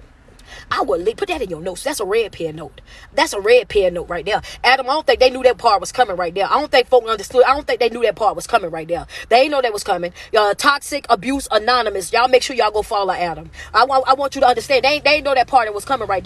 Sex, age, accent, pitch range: female, 20-39, American, 190-265 Hz